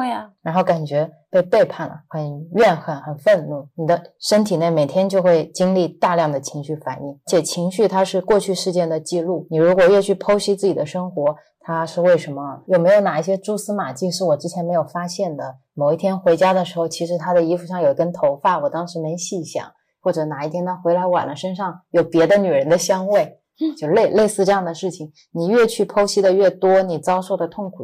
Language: Chinese